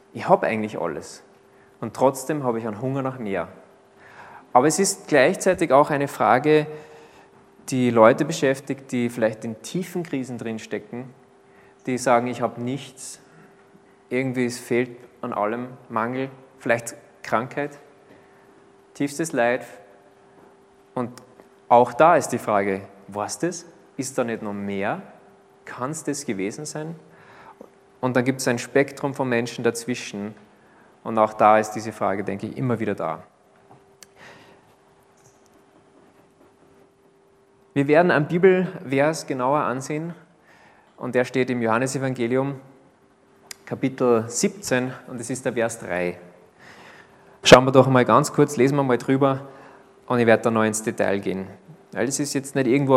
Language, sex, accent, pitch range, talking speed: German, male, German, 110-140 Hz, 140 wpm